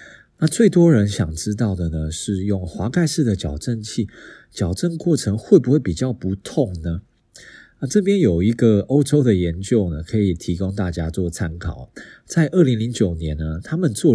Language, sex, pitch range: Chinese, male, 90-130 Hz